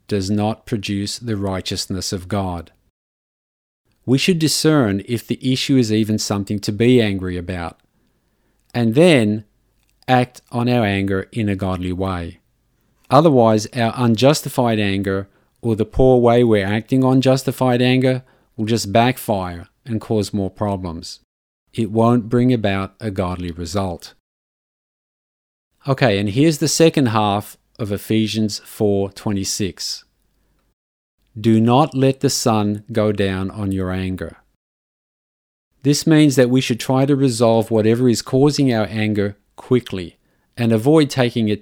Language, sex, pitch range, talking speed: English, male, 100-125 Hz, 135 wpm